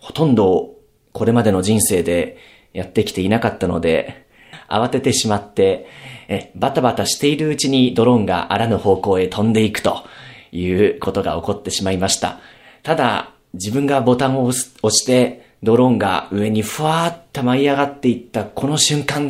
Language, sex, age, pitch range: Japanese, male, 40-59, 110-175 Hz